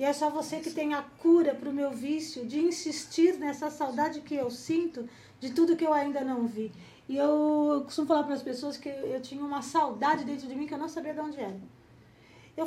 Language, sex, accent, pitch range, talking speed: Portuguese, female, Brazilian, 240-300 Hz, 225 wpm